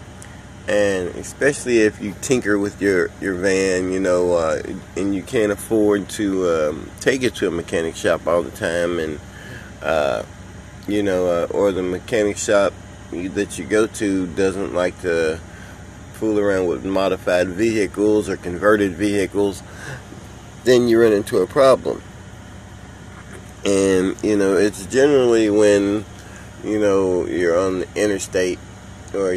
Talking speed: 145 wpm